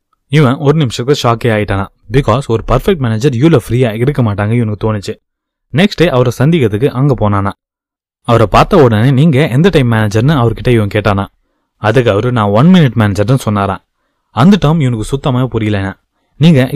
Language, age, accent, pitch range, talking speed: Tamil, 20-39, native, 105-135 Hz, 160 wpm